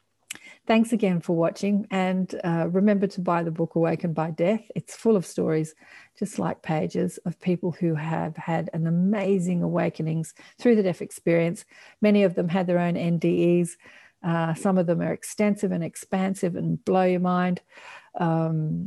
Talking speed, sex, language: 170 wpm, female, English